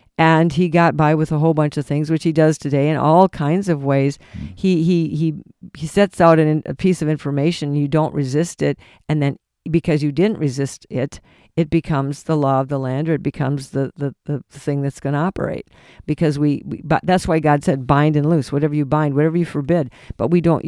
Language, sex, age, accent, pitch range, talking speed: English, female, 50-69, American, 145-170 Hz, 225 wpm